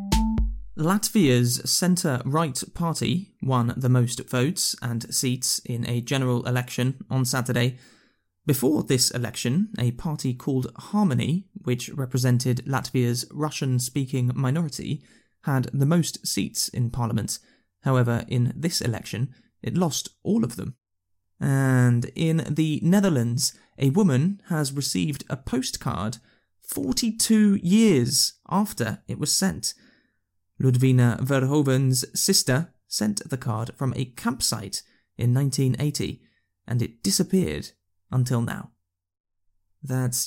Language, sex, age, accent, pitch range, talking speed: English, male, 20-39, British, 120-155 Hz, 110 wpm